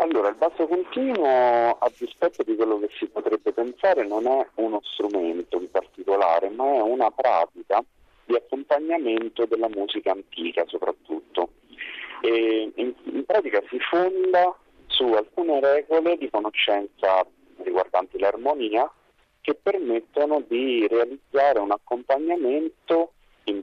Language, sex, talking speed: Italian, male, 120 wpm